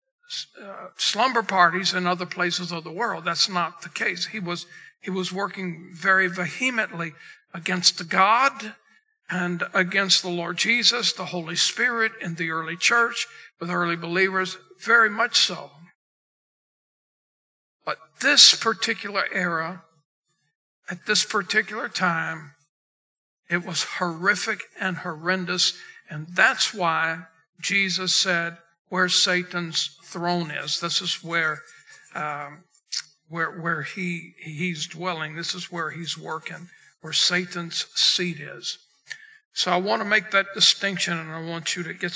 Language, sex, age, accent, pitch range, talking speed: English, male, 60-79, American, 170-200 Hz, 130 wpm